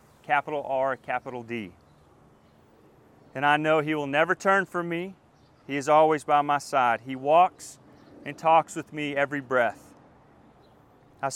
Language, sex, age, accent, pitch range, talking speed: English, male, 30-49, American, 145-175 Hz, 150 wpm